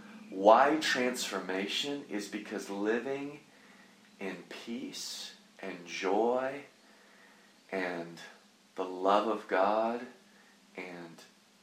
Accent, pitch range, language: American, 100-140 Hz, English